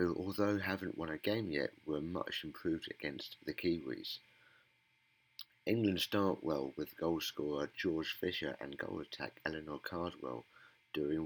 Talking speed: 140 wpm